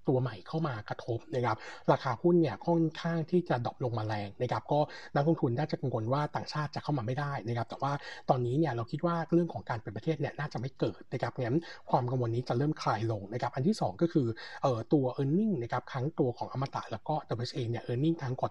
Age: 60-79